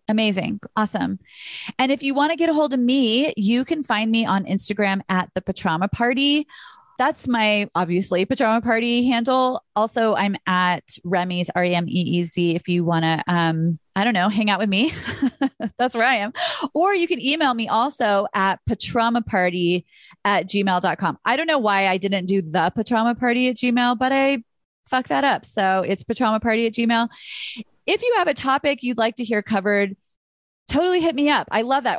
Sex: female